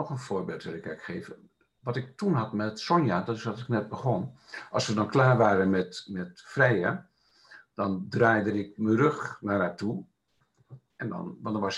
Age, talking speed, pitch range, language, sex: 60-79, 200 wpm, 100-135 Hz, Dutch, male